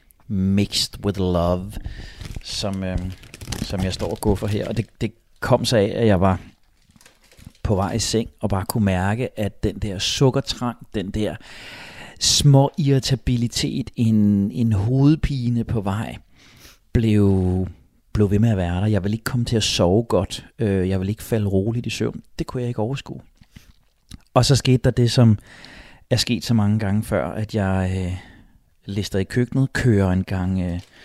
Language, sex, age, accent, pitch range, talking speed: Danish, male, 30-49, native, 95-115 Hz, 170 wpm